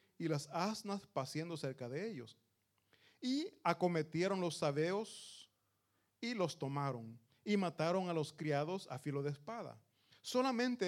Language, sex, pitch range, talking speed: Italian, male, 130-200 Hz, 130 wpm